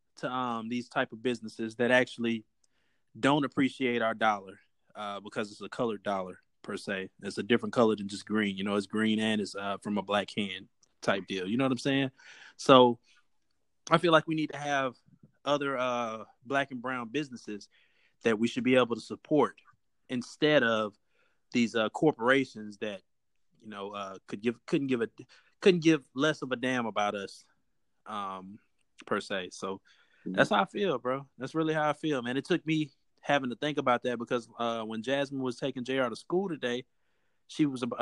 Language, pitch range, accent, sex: English, 110-140 Hz, American, male